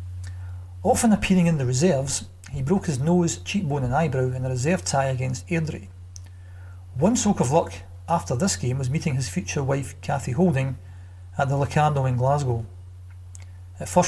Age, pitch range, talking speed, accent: 40-59, 90-145 Hz, 165 wpm, British